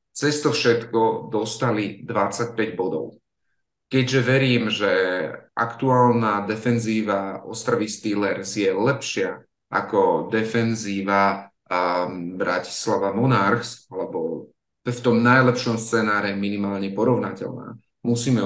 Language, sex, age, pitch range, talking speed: Slovak, male, 30-49, 105-120 Hz, 85 wpm